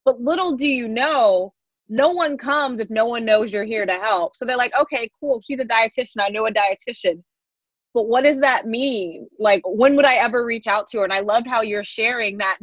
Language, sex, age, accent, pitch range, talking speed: English, female, 20-39, American, 195-255 Hz, 235 wpm